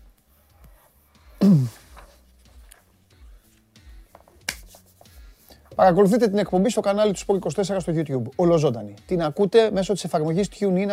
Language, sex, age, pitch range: Greek, male, 30-49, 120-190 Hz